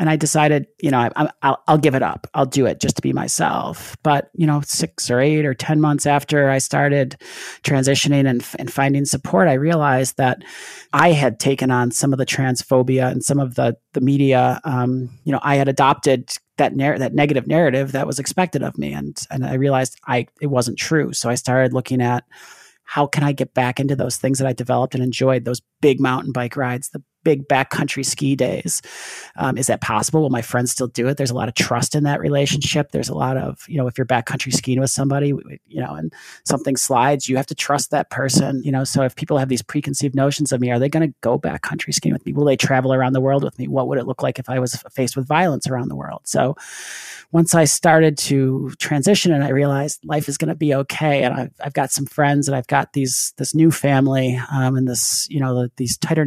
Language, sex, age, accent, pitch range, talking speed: English, male, 30-49, American, 130-145 Hz, 240 wpm